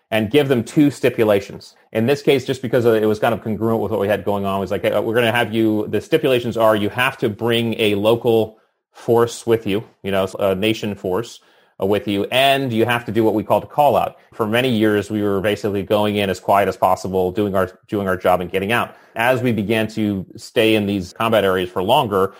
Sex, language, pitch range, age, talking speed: male, English, 100-115 Hz, 30-49, 245 wpm